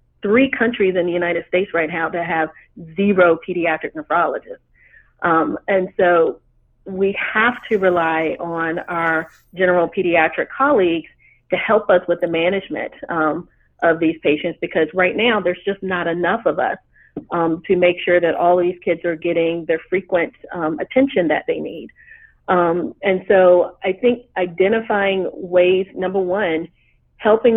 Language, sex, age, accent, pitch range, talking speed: English, female, 40-59, American, 165-190 Hz, 155 wpm